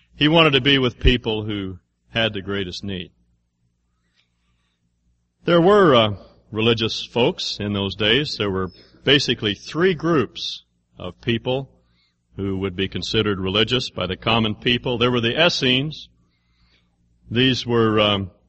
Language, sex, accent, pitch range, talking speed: English, male, American, 90-125 Hz, 135 wpm